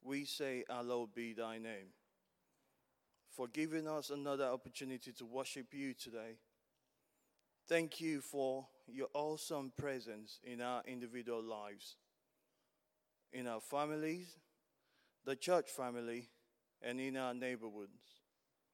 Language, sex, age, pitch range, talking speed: English, male, 30-49, 125-155 Hz, 110 wpm